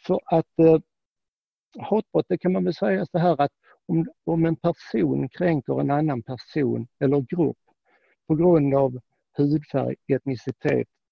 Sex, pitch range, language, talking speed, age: male, 125-155 Hz, Swedish, 145 wpm, 60-79